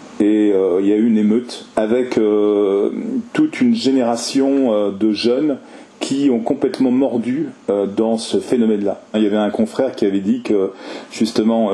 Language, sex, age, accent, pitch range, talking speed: French, male, 40-59, French, 105-125 Hz, 175 wpm